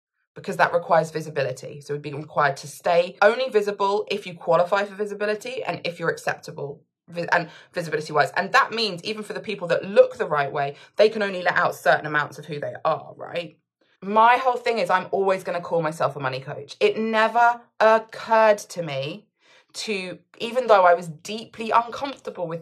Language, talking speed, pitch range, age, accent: English, 195 wpm, 155-210 Hz, 20-39, British